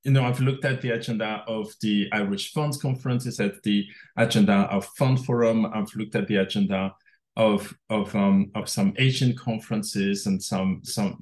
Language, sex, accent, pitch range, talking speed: English, male, French, 105-130 Hz, 175 wpm